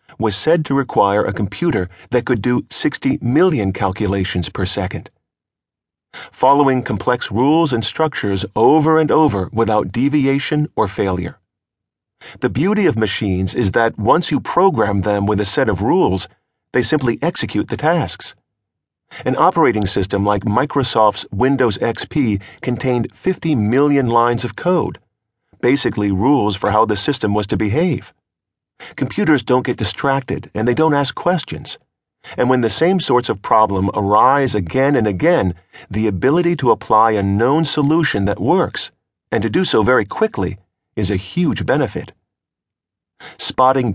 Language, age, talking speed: English, 50-69, 145 wpm